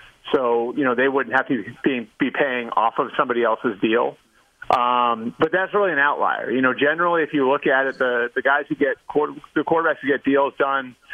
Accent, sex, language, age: American, male, English, 30-49